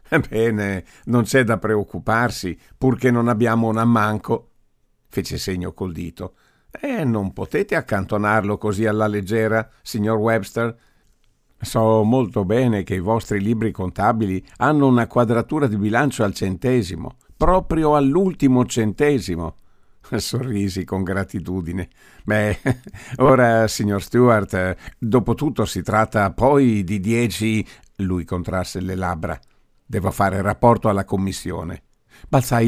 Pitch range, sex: 95-125 Hz, male